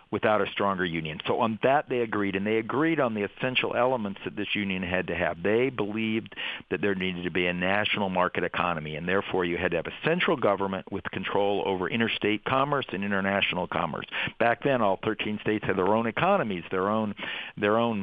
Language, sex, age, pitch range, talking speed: English, male, 50-69, 100-125 Hz, 210 wpm